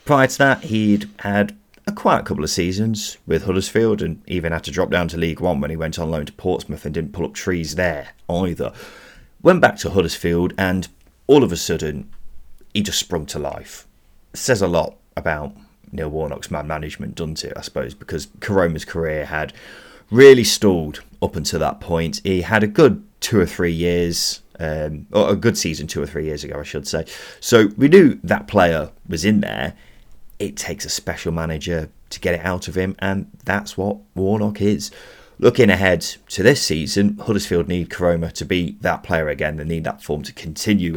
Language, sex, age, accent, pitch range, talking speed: English, male, 30-49, British, 80-100 Hz, 200 wpm